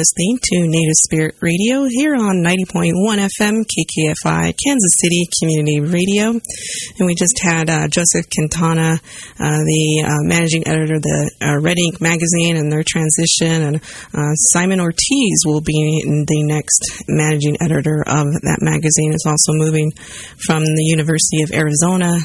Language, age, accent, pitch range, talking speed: English, 30-49, American, 155-180 Hz, 150 wpm